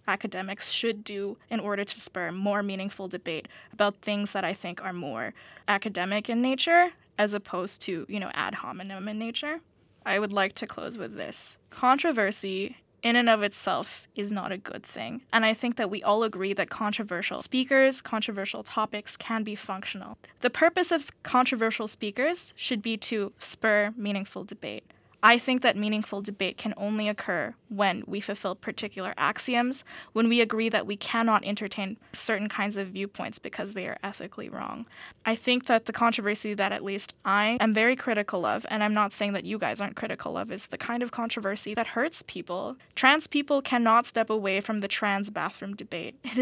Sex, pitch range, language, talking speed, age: female, 200-230 Hz, English, 185 wpm, 10-29